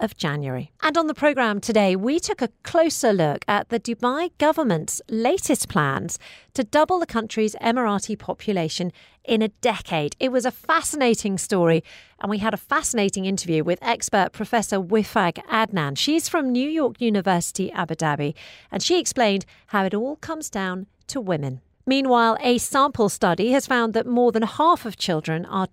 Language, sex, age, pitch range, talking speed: English, female, 40-59, 190-265 Hz, 165 wpm